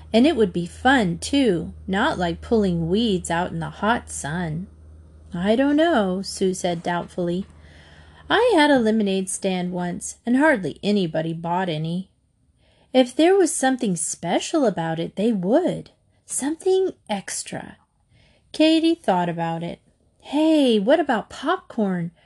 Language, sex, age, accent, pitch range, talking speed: English, female, 30-49, American, 175-270 Hz, 135 wpm